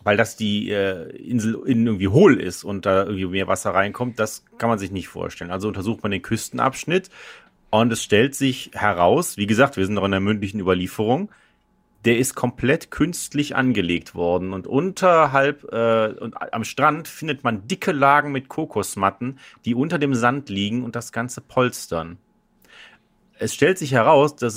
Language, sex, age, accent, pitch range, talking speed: German, male, 40-59, German, 100-135 Hz, 175 wpm